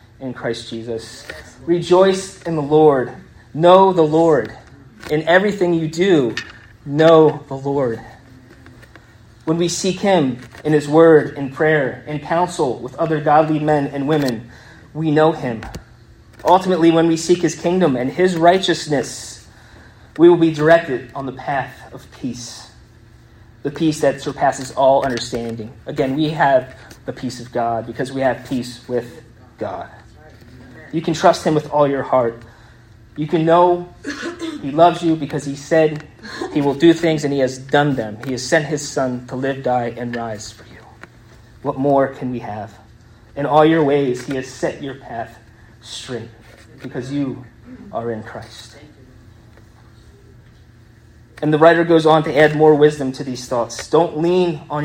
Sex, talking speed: male, 160 wpm